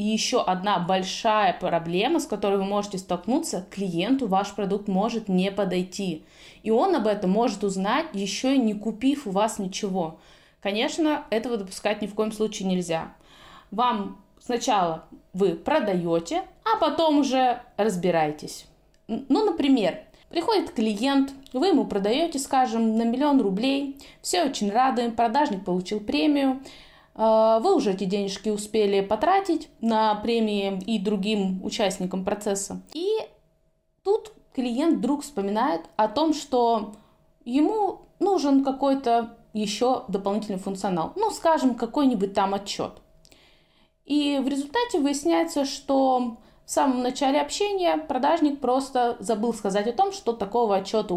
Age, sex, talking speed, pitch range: 20-39, female, 130 wpm, 200-280 Hz